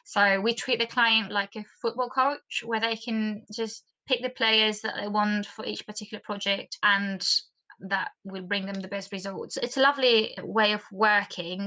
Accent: British